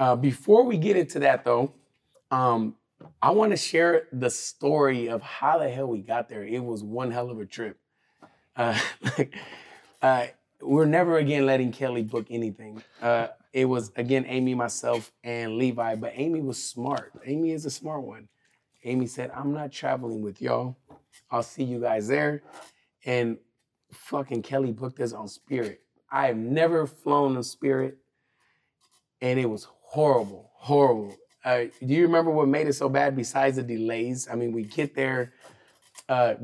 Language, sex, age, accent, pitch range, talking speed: English, male, 30-49, American, 115-140 Hz, 170 wpm